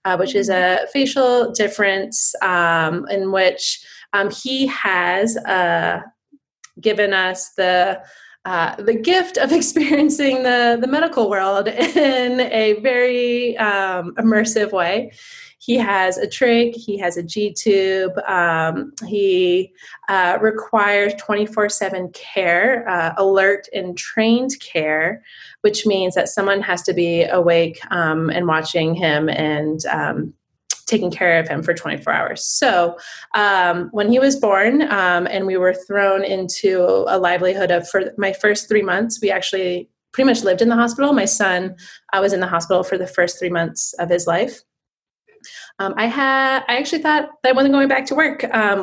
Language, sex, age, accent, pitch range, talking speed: English, female, 20-39, American, 180-235 Hz, 160 wpm